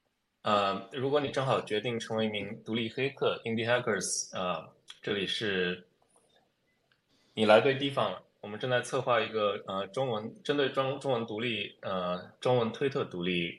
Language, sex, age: Chinese, male, 20-39